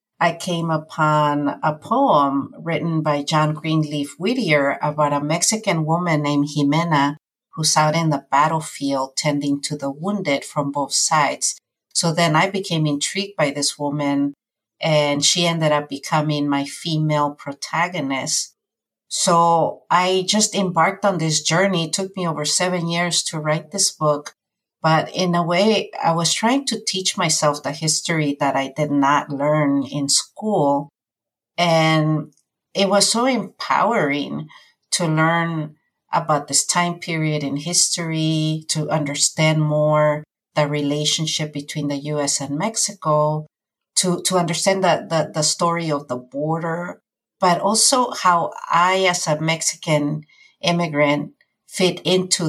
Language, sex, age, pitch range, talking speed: English, female, 50-69, 145-175 Hz, 140 wpm